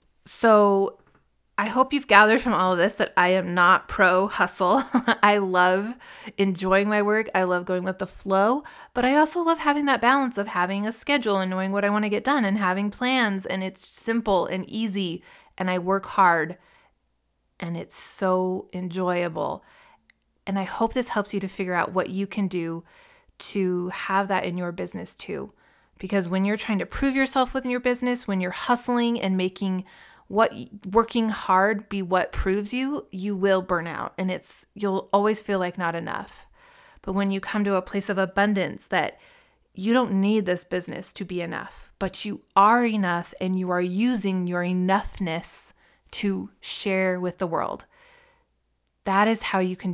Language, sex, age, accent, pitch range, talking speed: English, female, 20-39, American, 185-220 Hz, 185 wpm